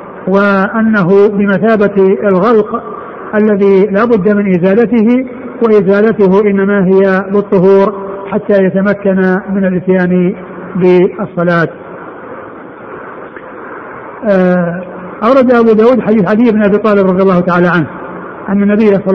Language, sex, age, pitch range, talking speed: Arabic, male, 50-69, 190-215 Hz, 105 wpm